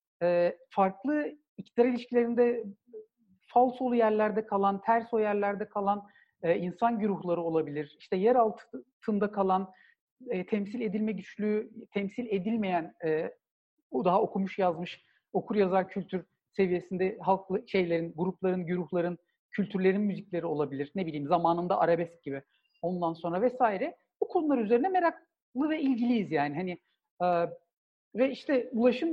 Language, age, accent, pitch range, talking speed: Turkish, 50-69, native, 185-245 Hz, 125 wpm